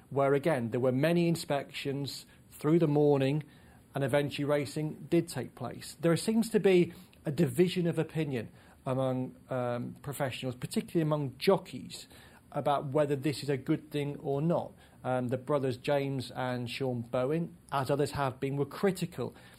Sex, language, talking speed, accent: male, English, 155 wpm, British